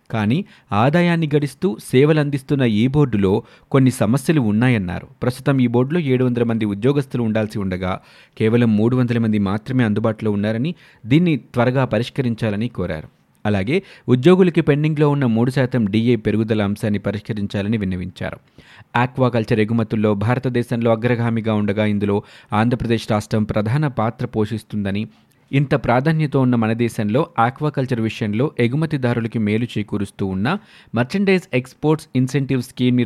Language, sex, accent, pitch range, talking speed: Telugu, male, native, 105-130 Hz, 120 wpm